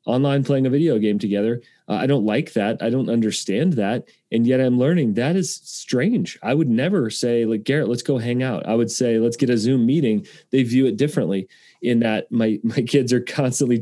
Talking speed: 220 wpm